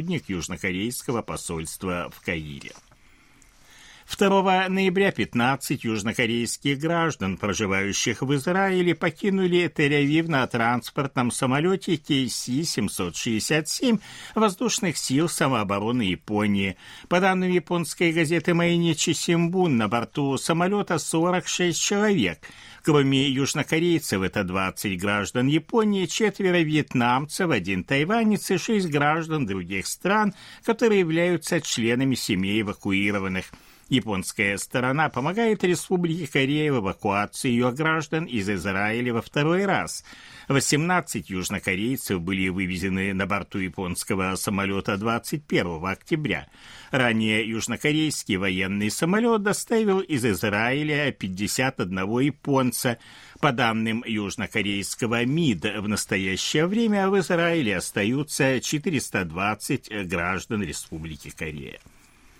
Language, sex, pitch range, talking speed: Russian, male, 105-170 Hz, 95 wpm